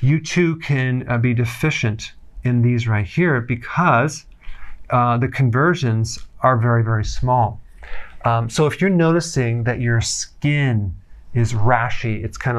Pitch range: 110-140 Hz